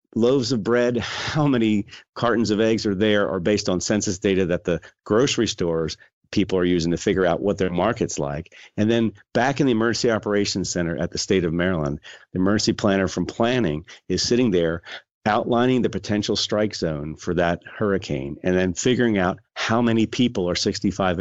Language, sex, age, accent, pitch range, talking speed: English, male, 40-59, American, 90-110 Hz, 190 wpm